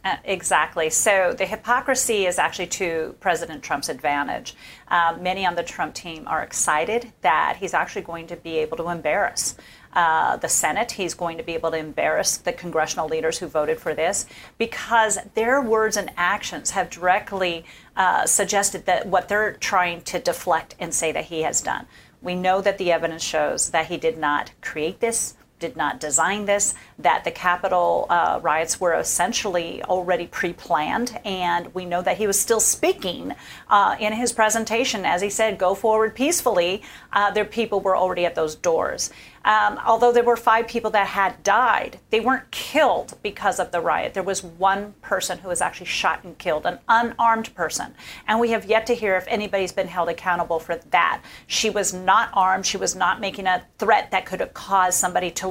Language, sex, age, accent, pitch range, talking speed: English, female, 40-59, American, 175-220 Hz, 190 wpm